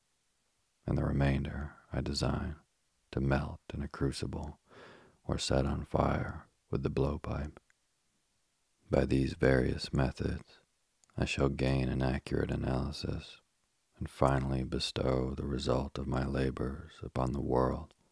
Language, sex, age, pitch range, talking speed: English, male, 40-59, 65-70 Hz, 125 wpm